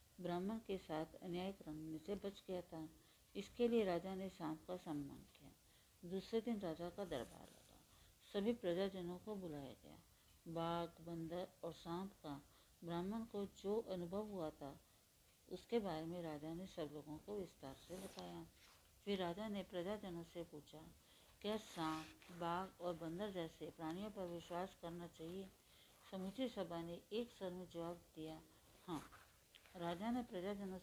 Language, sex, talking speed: Hindi, female, 150 wpm